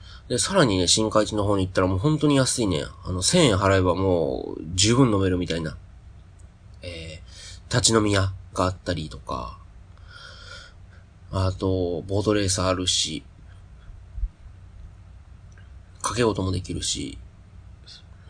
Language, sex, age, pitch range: Japanese, male, 30-49, 90-105 Hz